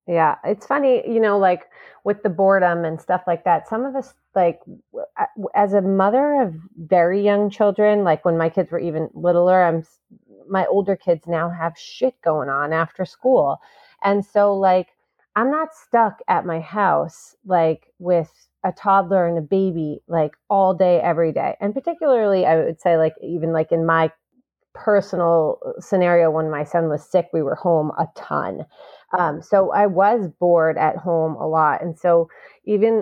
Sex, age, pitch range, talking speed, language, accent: female, 30-49, 165-200 Hz, 175 wpm, English, American